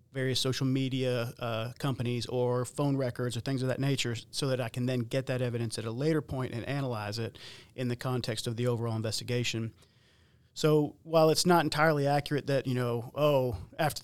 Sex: male